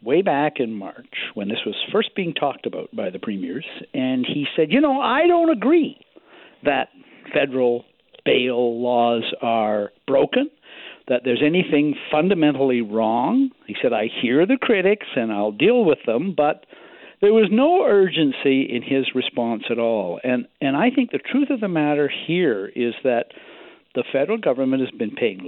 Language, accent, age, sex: English, American, 60-79, male